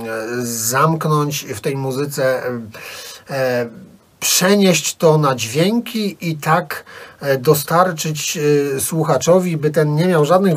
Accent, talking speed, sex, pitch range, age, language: native, 95 wpm, male, 130-160 Hz, 40-59, Polish